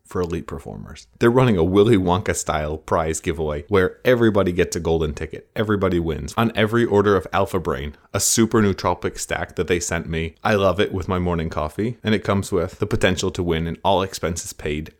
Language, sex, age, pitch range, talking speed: English, male, 20-39, 80-105 Hz, 210 wpm